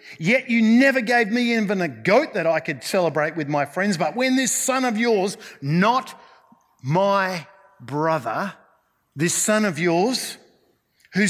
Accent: Australian